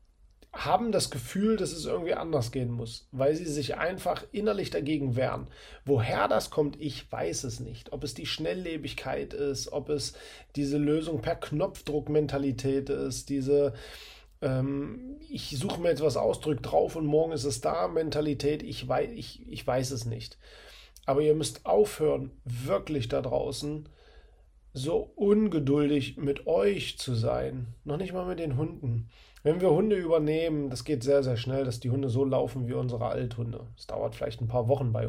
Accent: German